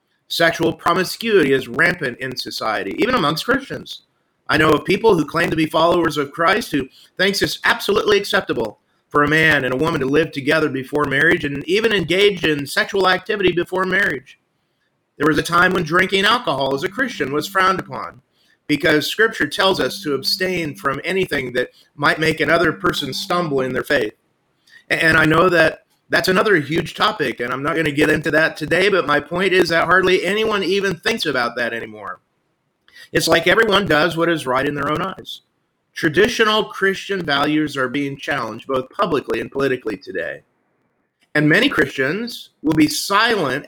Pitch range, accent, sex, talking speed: 145-185 Hz, American, male, 180 wpm